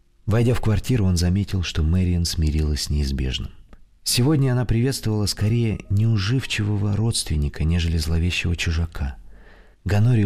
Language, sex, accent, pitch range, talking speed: Russian, male, native, 85-100 Hz, 115 wpm